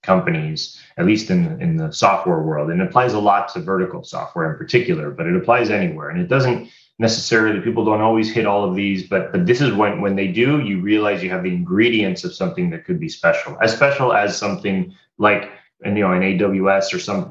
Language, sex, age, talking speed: English, male, 30-49, 230 wpm